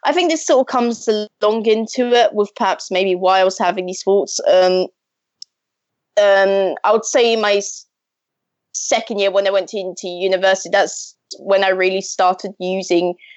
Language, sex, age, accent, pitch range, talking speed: English, female, 20-39, British, 185-225 Hz, 165 wpm